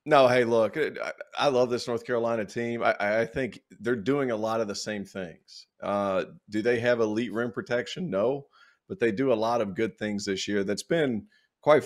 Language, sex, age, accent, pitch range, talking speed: English, male, 40-59, American, 105-130 Hz, 205 wpm